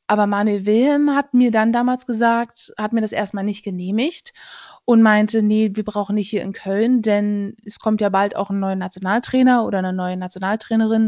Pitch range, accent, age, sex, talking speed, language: 200-225 Hz, German, 20-39, female, 195 wpm, German